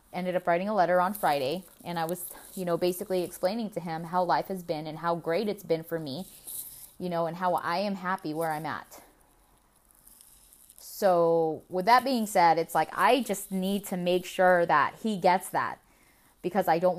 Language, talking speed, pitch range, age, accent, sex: English, 200 wpm, 170-200 Hz, 20-39, American, female